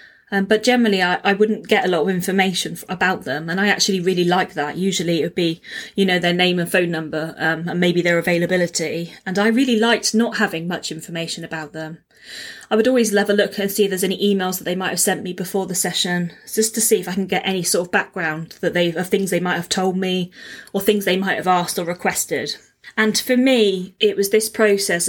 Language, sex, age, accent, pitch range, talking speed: English, female, 20-39, British, 175-205 Hz, 245 wpm